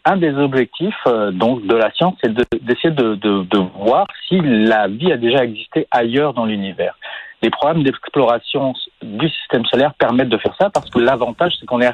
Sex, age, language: male, 40-59, French